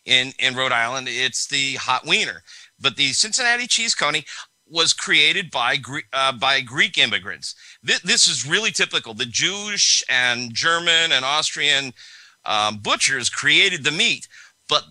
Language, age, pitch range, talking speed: English, 50-69, 125-155 Hz, 150 wpm